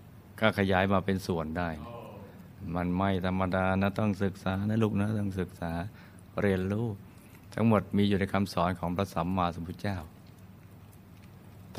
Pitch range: 95-110 Hz